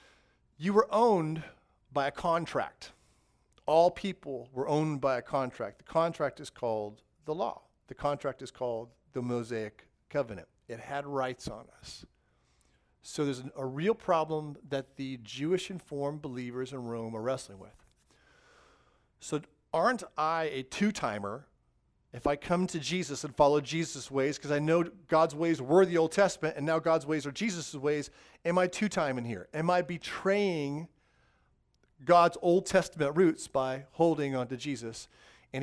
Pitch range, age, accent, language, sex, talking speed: 125-165 Hz, 40-59, American, English, male, 160 wpm